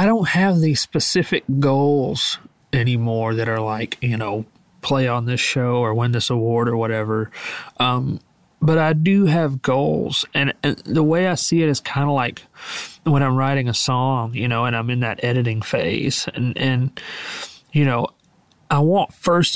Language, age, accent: English, 40-59, American